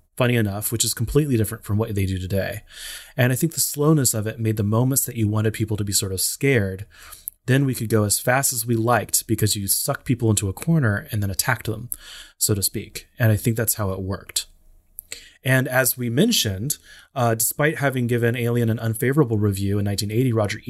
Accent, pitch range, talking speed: American, 100-120 Hz, 215 wpm